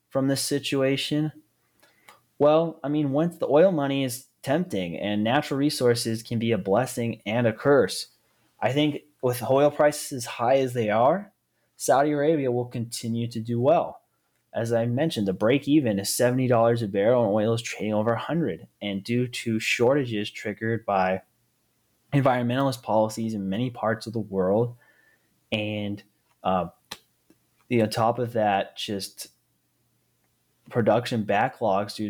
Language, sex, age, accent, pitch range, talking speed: English, male, 20-39, American, 105-130 Hz, 150 wpm